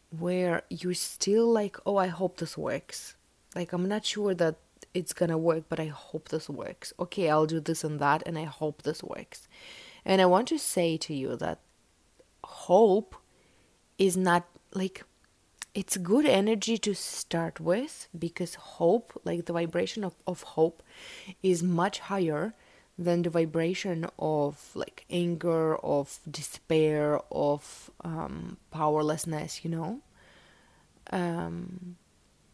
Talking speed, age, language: 140 wpm, 20-39, English